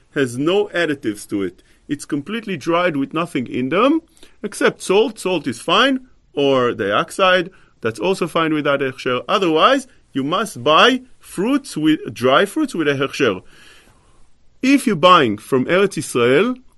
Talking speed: 145 wpm